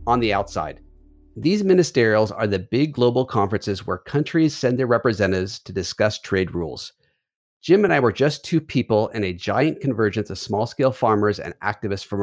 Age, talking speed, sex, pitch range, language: 40-59, 175 wpm, male, 100-130 Hz, English